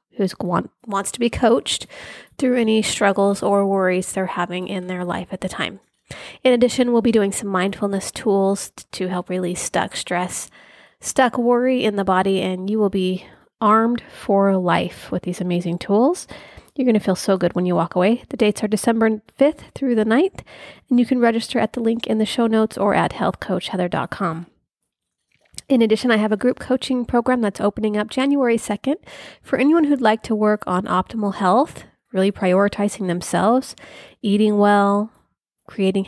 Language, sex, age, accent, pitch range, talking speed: English, female, 30-49, American, 185-230 Hz, 180 wpm